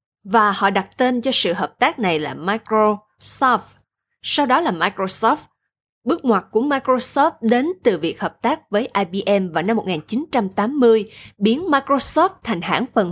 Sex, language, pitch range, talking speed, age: female, Vietnamese, 185-250 Hz, 155 wpm, 20-39